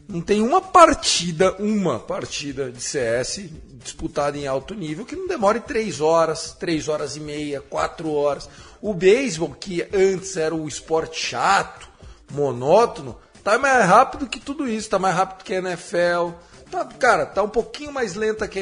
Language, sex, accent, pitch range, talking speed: Portuguese, male, Brazilian, 170-230 Hz, 170 wpm